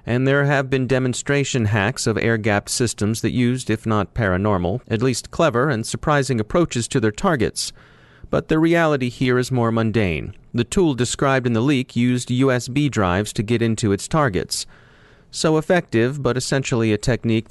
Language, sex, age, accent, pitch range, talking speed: English, male, 30-49, American, 100-130 Hz, 170 wpm